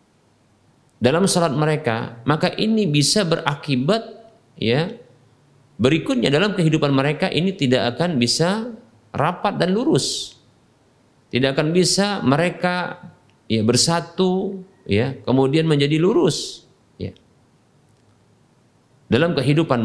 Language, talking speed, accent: Indonesian, 95 wpm, native